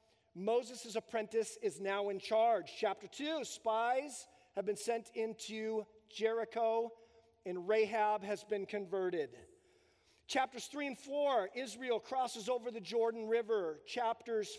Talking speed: 125 wpm